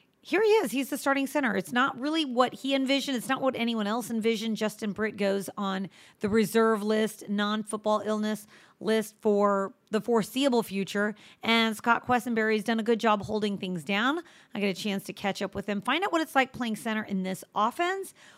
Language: English